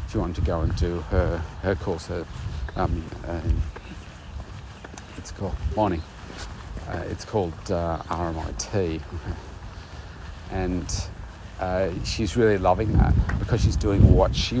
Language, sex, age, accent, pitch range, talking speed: English, male, 40-59, Australian, 85-105 Hz, 125 wpm